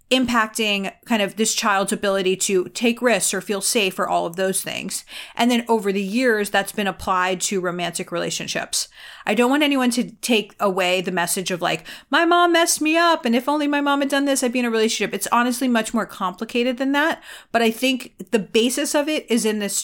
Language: English